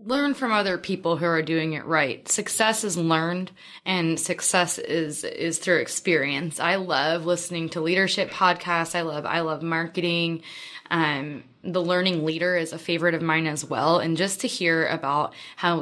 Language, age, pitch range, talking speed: English, 20-39, 150-180 Hz, 175 wpm